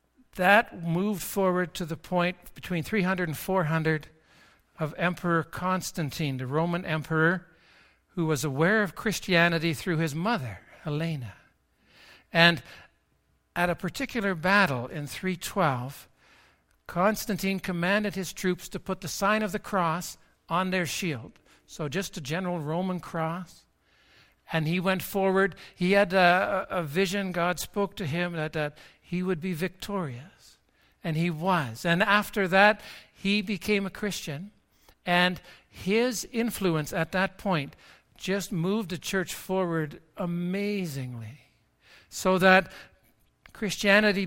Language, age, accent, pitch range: English, 60-79, American, 165-195 Hz